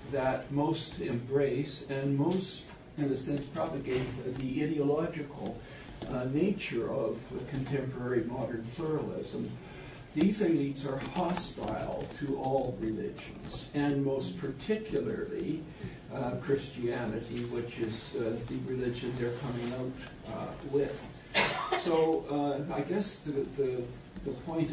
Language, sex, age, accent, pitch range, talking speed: English, male, 60-79, American, 125-150 Hz, 110 wpm